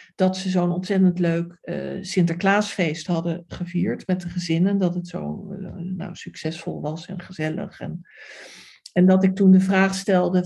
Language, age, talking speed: Dutch, 60-79, 165 wpm